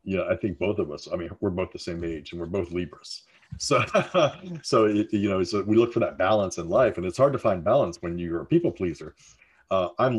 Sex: male